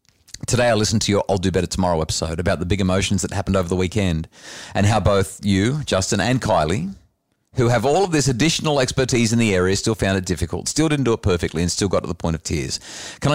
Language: English